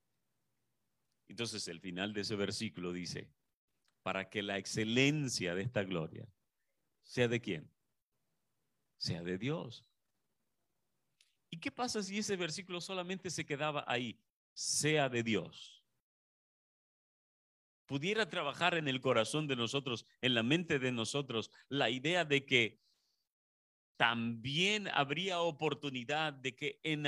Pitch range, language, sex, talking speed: 110-170 Hz, Spanish, male, 120 wpm